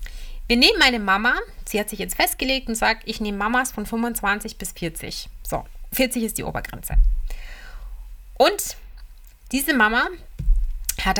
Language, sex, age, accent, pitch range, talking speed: German, female, 30-49, German, 205-265 Hz, 145 wpm